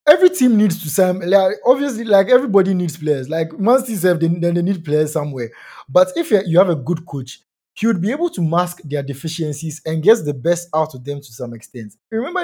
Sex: male